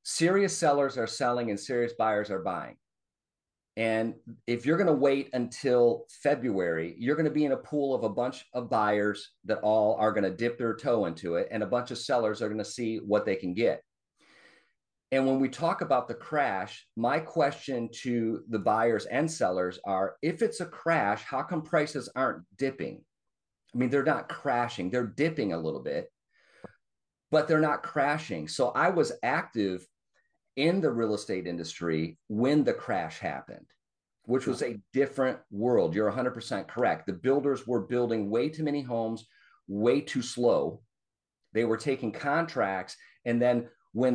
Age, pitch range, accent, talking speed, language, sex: 40-59, 105-140 Hz, American, 175 wpm, English, male